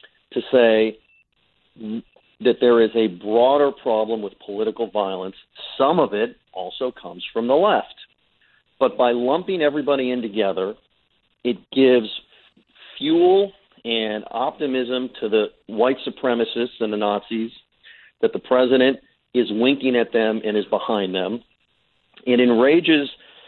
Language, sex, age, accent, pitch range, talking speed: English, male, 40-59, American, 110-130 Hz, 130 wpm